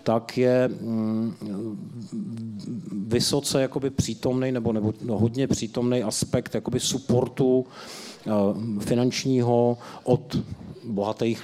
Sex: male